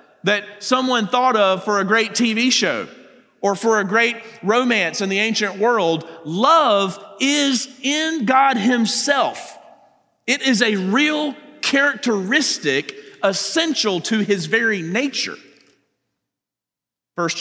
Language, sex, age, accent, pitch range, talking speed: English, male, 40-59, American, 170-240 Hz, 115 wpm